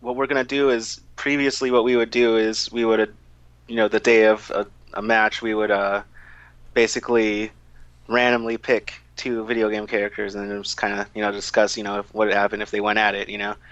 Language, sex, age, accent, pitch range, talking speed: English, male, 30-49, American, 100-120 Hz, 225 wpm